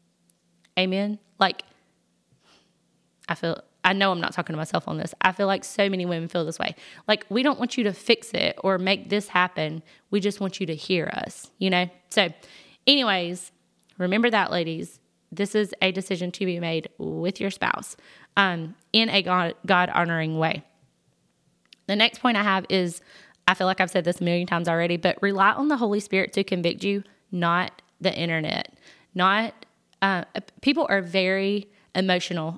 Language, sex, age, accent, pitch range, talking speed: English, female, 20-39, American, 175-205 Hz, 180 wpm